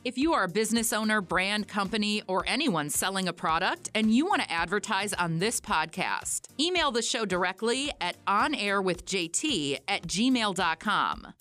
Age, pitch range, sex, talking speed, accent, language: 30-49, 190-245 Hz, female, 155 wpm, American, English